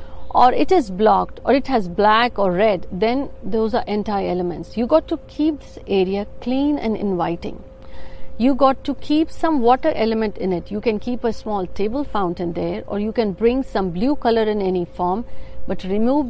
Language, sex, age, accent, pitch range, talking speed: Hindi, female, 50-69, native, 195-255 Hz, 195 wpm